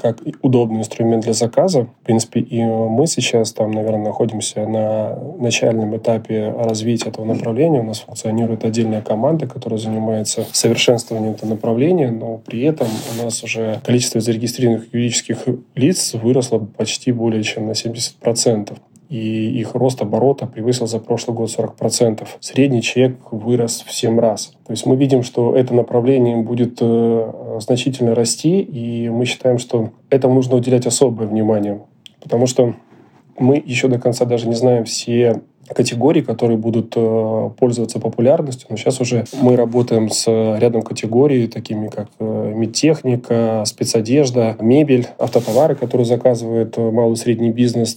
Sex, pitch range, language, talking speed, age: male, 115-125 Hz, Russian, 145 wpm, 20-39